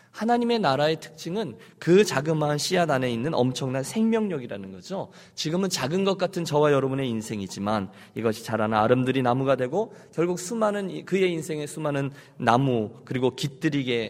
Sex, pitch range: male, 110-165 Hz